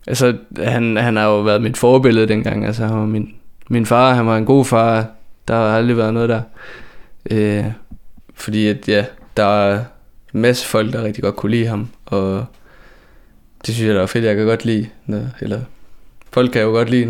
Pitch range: 100-115 Hz